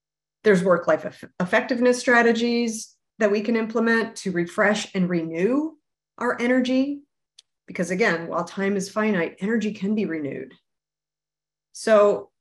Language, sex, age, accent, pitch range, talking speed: English, female, 30-49, American, 180-235 Hz, 120 wpm